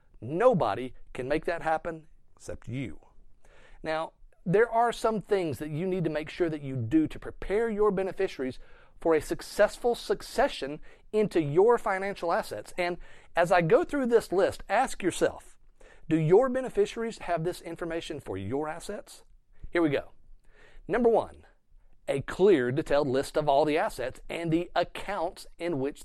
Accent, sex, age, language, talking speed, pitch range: American, male, 40-59, English, 160 wpm, 145-200 Hz